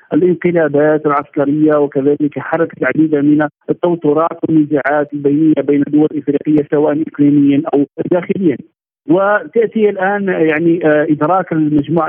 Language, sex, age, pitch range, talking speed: Arabic, male, 50-69, 150-175 Hz, 105 wpm